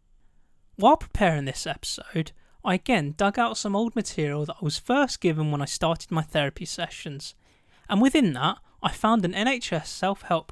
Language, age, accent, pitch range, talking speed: English, 20-39, British, 150-210 Hz, 170 wpm